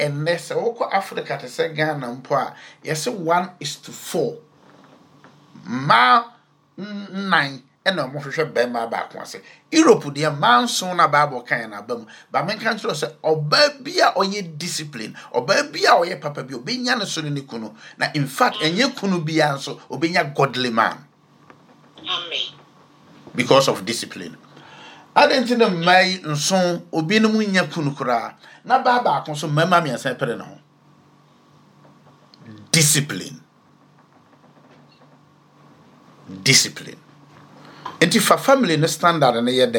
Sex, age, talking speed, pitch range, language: male, 50-69, 125 wpm, 145-210 Hz, English